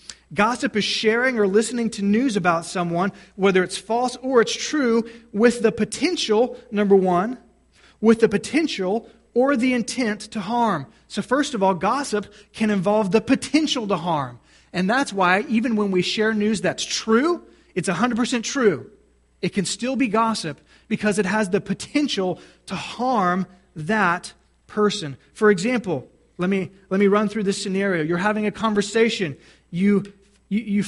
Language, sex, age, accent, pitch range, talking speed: English, male, 30-49, American, 190-230 Hz, 160 wpm